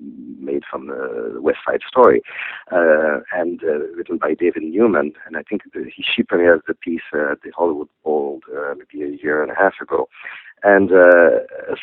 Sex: male